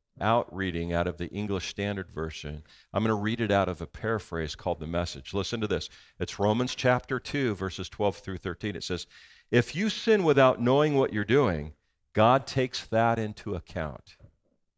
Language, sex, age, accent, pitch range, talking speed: English, male, 50-69, American, 90-120 Hz, 185 wpm